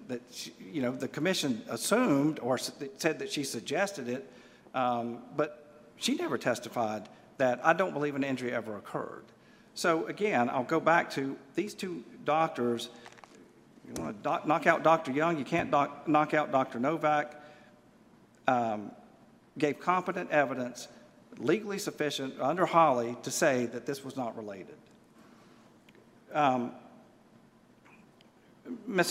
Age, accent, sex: 50-69, American, male